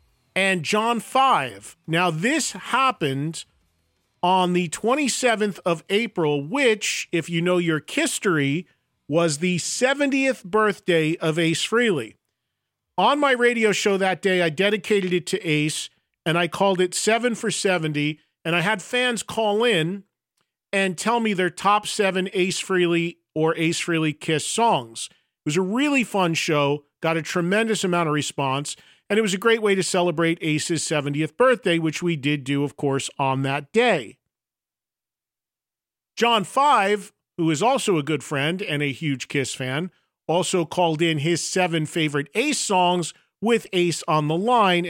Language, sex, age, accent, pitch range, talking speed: English, male, 40-59, American, 155-205 Hz, 160 wpm